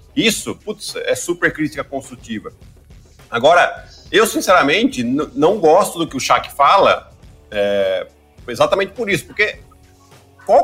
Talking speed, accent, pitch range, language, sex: 130 wpm, Brazilian, 140-200 Hz, Portuguese, male